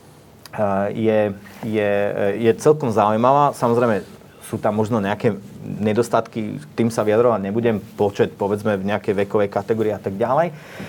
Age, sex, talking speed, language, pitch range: 30-49, male, 140 wpm, Slovak, 115-135 Hz